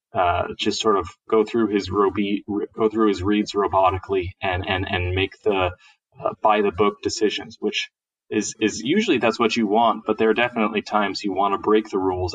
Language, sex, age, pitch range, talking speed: English, male, 30-49, 100-150 Hz, 200 wpm